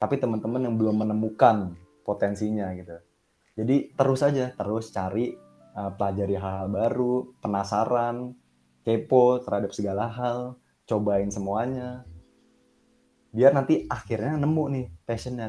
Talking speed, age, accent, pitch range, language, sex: 110 wpm, 20-39, native, 100-120 Hz, Indonesian, male